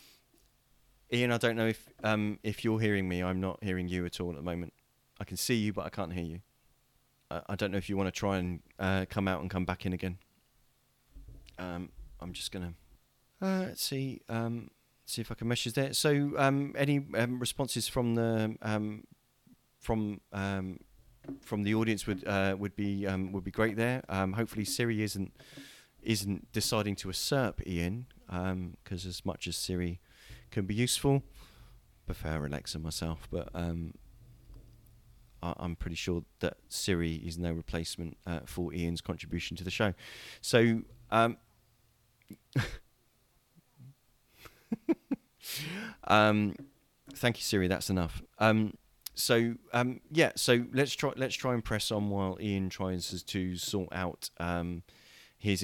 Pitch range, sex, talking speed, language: 90-120 Hz, male, 160 wpm, English